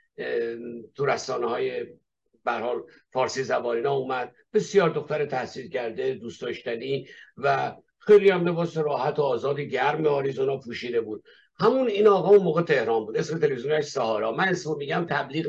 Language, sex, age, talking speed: Persian, male, 50-69, 140 wpm